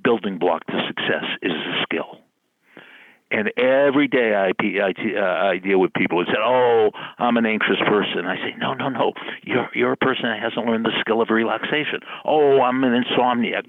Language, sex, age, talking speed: English, male, 60-79, 185 wpm